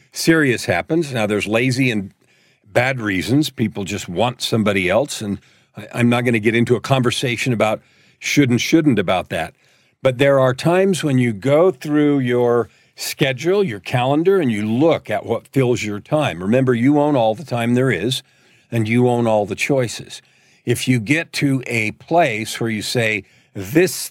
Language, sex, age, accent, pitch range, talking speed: English, male, 50-69, American, 120-145 Hz, 180 wpm